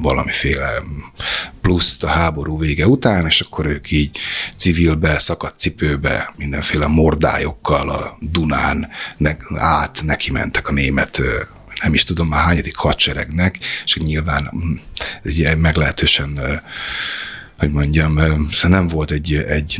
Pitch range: 75-90 Hz